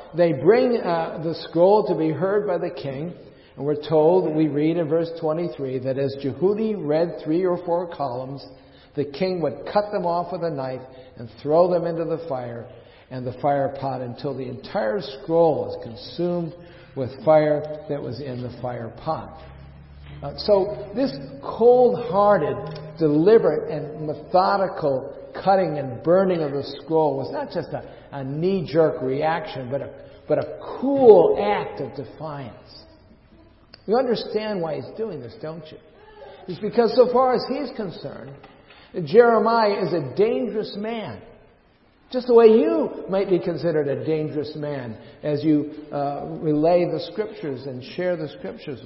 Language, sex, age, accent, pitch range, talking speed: English, male, 50-69, American, 140-190 Hz, 155 wpm